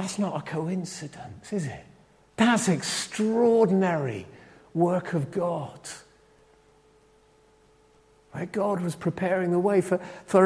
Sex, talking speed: male, 105 wpm